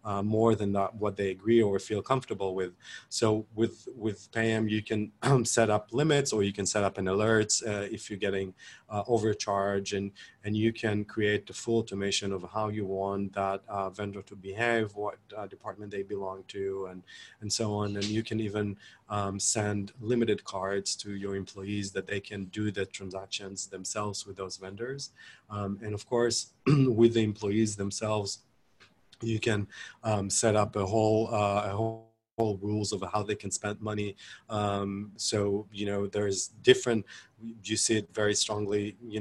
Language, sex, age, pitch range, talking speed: English, male, 30-49, 100-110 Hz, 185 wpm